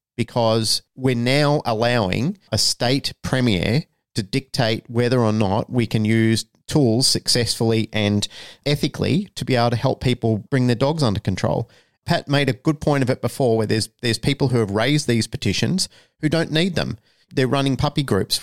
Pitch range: 110-140 Hz